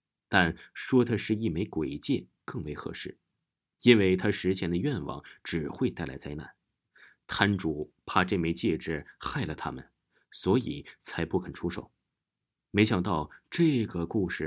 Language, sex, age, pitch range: Chinese, male, 30-49, 85-110 Hz